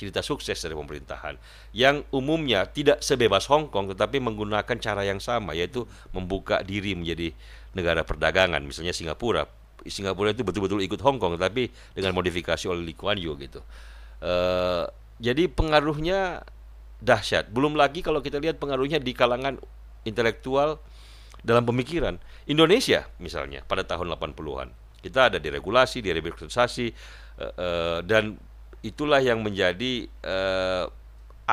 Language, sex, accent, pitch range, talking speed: Indonesian, male, native, 90-125 Hz, 130 wpm